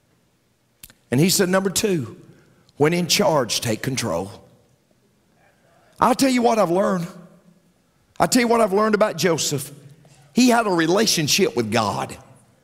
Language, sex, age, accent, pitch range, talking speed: English, male, 50-69, American, 150-250 Hz, 140 wpm